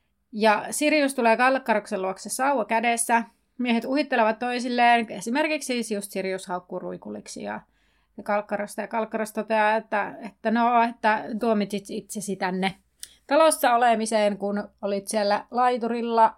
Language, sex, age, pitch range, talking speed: Finnish, female, 30-49, 200-245 Hz, 120 wpm